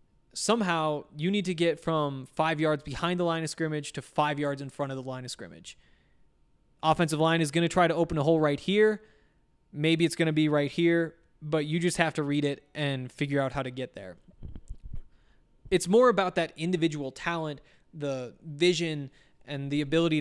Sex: male